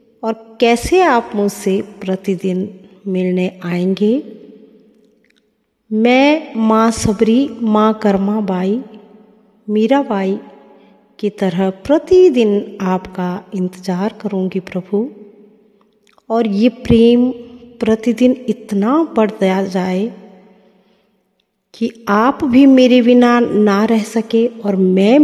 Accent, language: native, Hindi